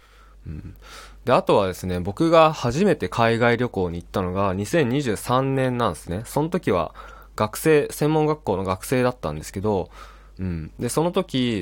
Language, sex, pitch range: Japanese, male, 95-140 Hz